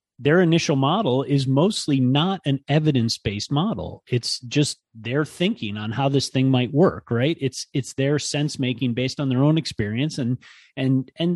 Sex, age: male, 30-49